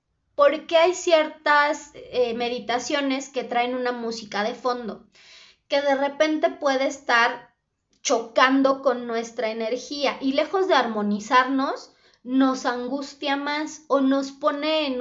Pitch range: 220-295 Hz